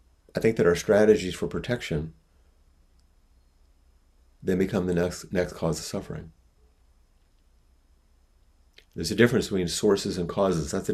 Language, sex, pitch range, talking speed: English, male, 70-90 Hz, 130 wpm